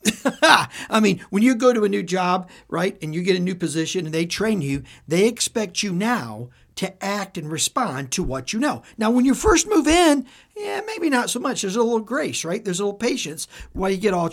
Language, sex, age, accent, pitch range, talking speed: English, male, 50-69, American, 160-230 Hz, 235 wpm